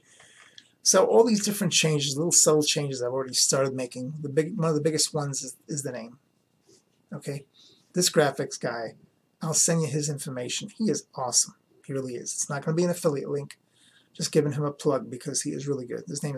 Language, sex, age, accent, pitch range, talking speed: English, male, 30-49, American, 140-170 Hz, 215 wpm